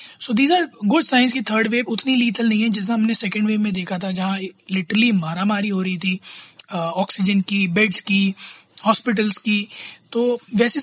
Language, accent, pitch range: Hindi, native, 195-245 Hz